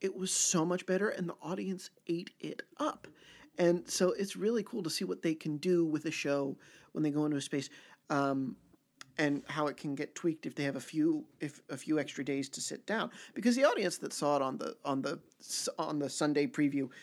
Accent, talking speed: American, 230 wpm